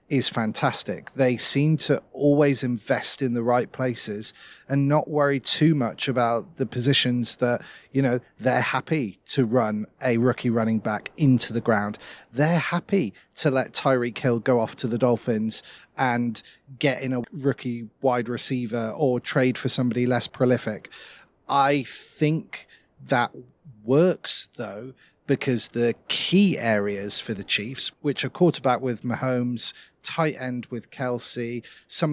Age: 30-49